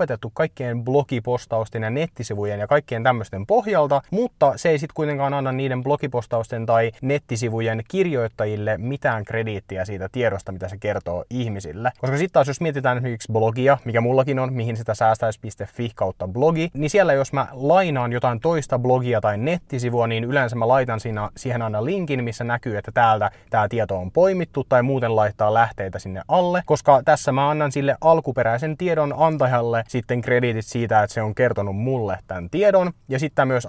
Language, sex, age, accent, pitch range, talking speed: Finnish, male, 30-49, native, 110-140 Hz, 170 wpm